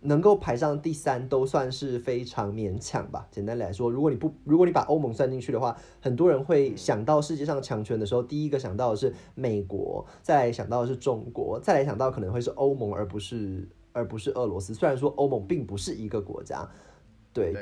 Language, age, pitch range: Chinese, 20-39, 110-155 Hz